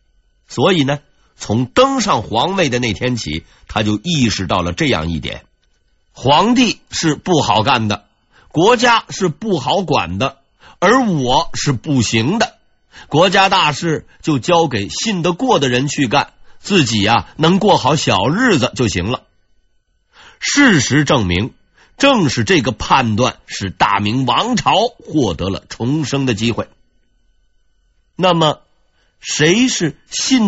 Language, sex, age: Chinese, male, 50-69